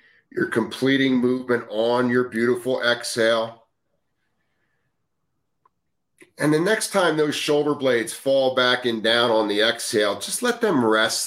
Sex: male